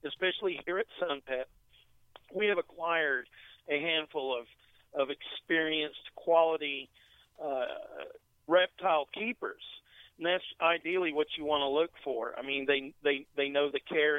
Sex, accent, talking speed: male, American, 140 wpm